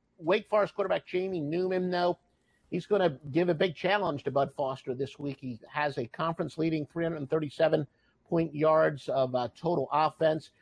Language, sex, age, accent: English, male, 50-69, American